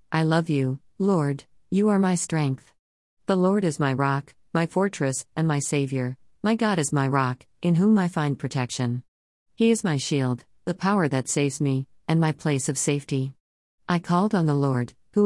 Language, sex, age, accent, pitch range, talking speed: English, female, 50-69, American, 135-175 Hz, 190 wpm